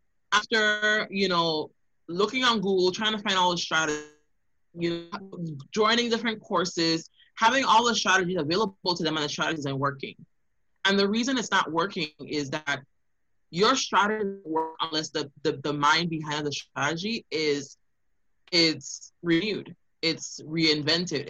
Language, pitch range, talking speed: English, 150-195 Hz, 150 wpm